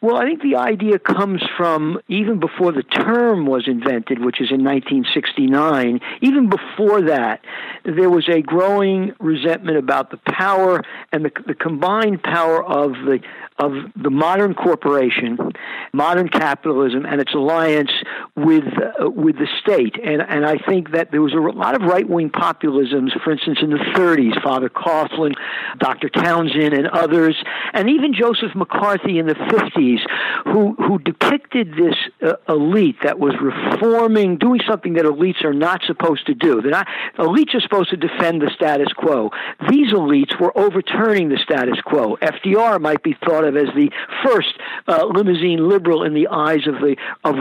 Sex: male